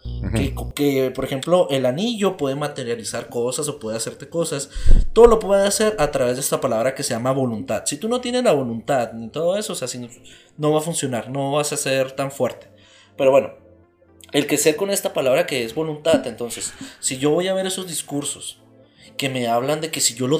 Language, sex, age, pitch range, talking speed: Spanish, male, 30-49, 130-175 Hz, 225 wpm